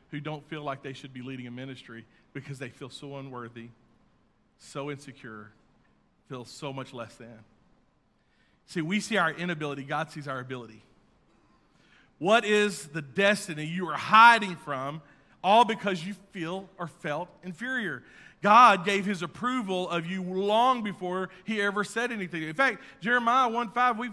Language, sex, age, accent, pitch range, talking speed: English, male, 40-59, American, 155-230 Hz, 155 wpm